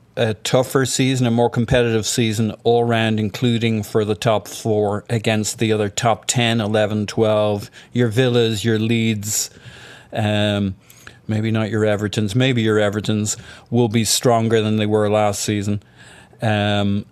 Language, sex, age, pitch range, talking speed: English, male, 40-59, 105-115 Hz, 145 wpm